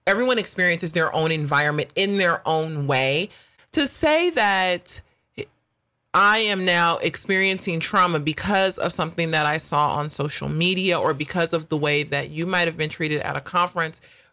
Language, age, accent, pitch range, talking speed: English, 30-49, American, 160-220 Hz, 170 wpm